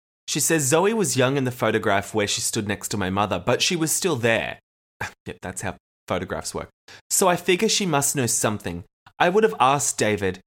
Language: English